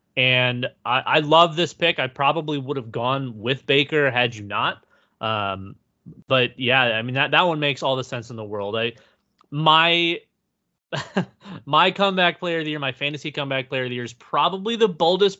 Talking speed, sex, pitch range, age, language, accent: 195 wpm, male, 125-170 Hz, 30-49, English, American